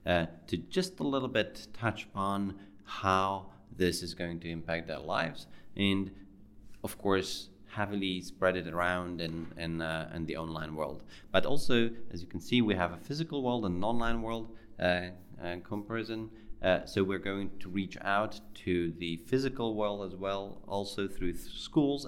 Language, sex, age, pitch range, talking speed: Hungarian, male, 30-49, 90-105 Hz, 175 wpm